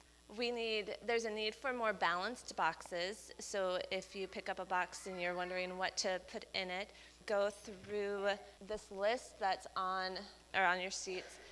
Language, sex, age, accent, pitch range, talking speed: English, female, 20-39, American, 185-210 Hz, 175 wpm